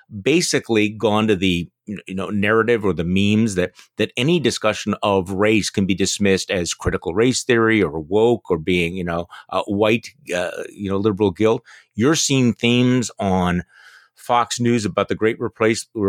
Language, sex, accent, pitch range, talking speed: English, male, American, 100-135 Hz, 170 wpm